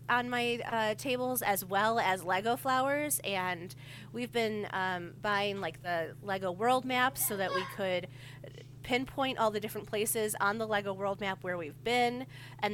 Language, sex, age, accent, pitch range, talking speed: English, female, 30-49, American, 180-230 Hz, 175 wpm